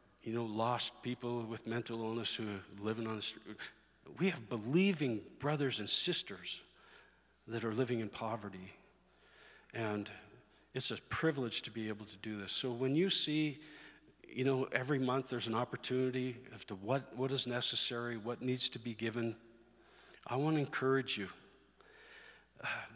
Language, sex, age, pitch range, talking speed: English, male, 50-69, 110-135 Hz, 160 wpm